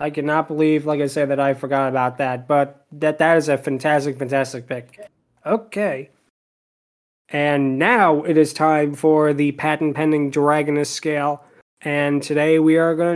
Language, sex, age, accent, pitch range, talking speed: English, male, 20-39, American, 145-175 Hz, 160 wpm